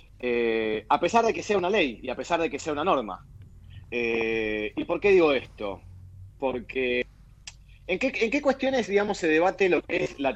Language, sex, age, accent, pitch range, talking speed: Spanish, male, 30-49, Argentinian, 120-180 Hz, 205 wpm